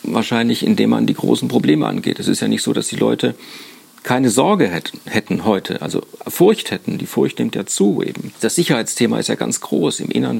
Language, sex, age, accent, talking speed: German, male, 40-59, German, 215 wpm